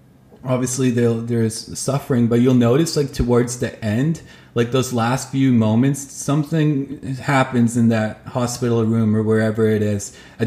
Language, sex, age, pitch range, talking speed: English, male, 20-39, 115-130 Hz, 150 wpm